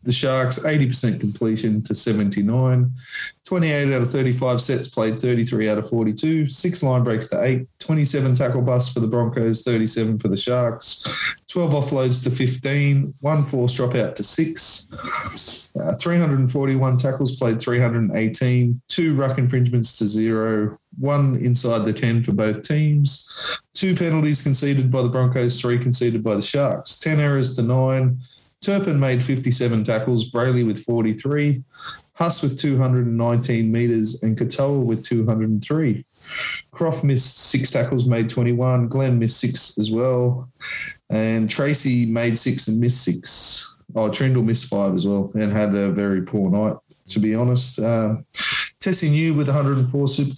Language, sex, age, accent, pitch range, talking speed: English, male, 20-39, Australian, 115-135 Hz, 150 wpm